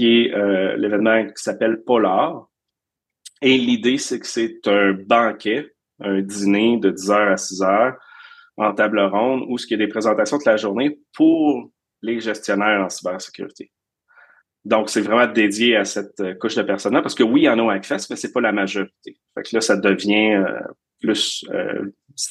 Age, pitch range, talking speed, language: 30-49, 100-115 Hz, 185 wpm, French